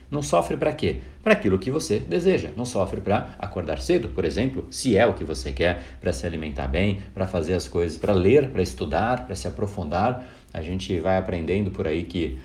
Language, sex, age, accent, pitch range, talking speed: Portuguese, male, 60-79, Brazilian, 85-115 Hz, 210 wpm